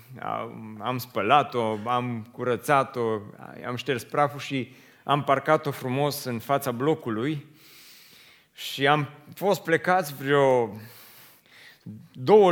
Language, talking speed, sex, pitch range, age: Romanian, 95 wpm, male, 125-160 Hz, 30-49